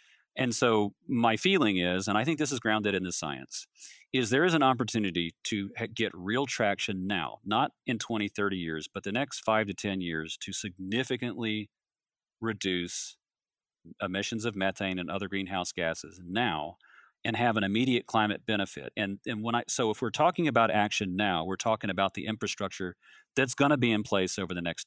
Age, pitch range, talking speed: 40-59, 95-110 Hz, 190 wpm